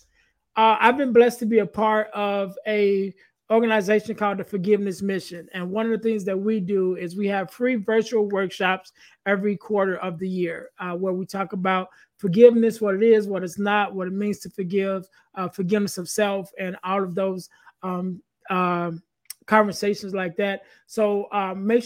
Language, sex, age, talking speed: English, male, 20-39, 185 wpm